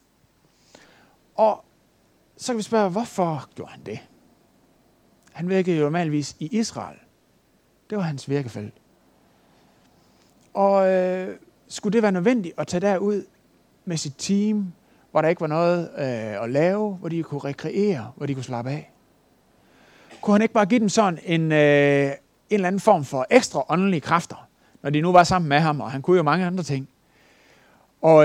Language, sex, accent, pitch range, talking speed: Danish, male, native, 145-200 Hz, 170 wpm